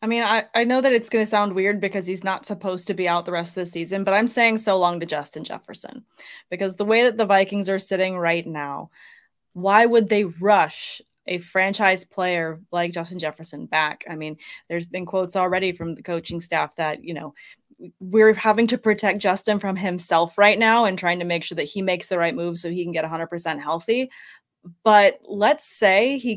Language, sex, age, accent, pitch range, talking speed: English, female, 20-39, American, 175-215 Hz, 215 wpm